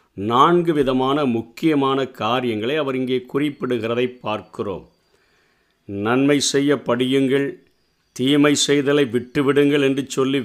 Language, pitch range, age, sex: Tamil, 130-155 Hz, 50-69, male